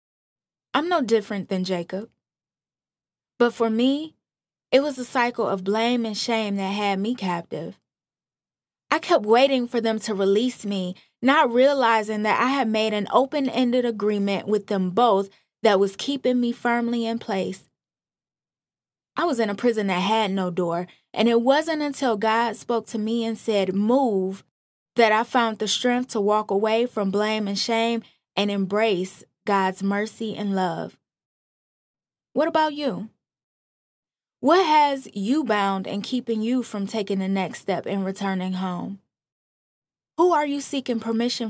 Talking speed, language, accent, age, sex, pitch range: 155 wpm, English, American, 20-39, female, 200-250 Hz